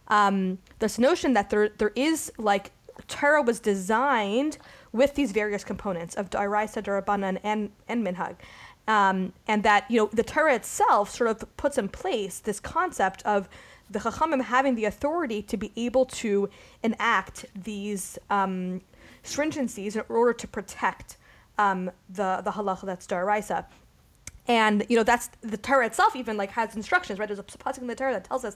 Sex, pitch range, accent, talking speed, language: female, 205-250 Hz, American, 170 wpm, English